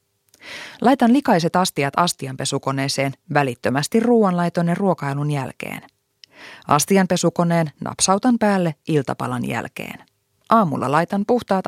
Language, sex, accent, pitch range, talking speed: Finnish, female, native, 145-200 Hz, 80 wpm